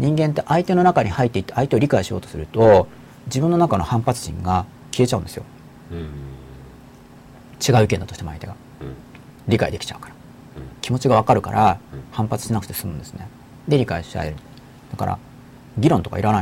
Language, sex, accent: Japanese, male, native